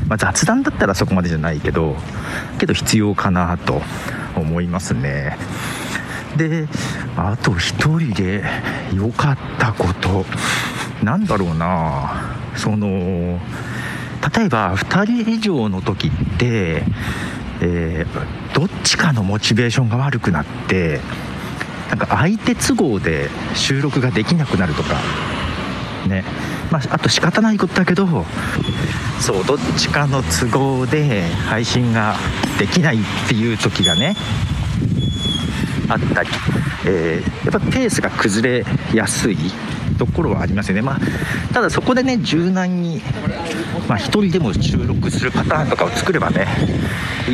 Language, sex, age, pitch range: Japanese, male, 50-69, 95-150 Hz